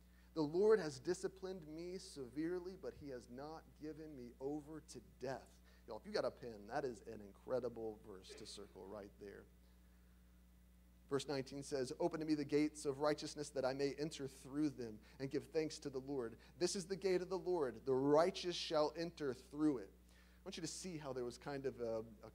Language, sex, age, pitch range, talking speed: English, male, 30-49, 115-160 Hz, 205 wpm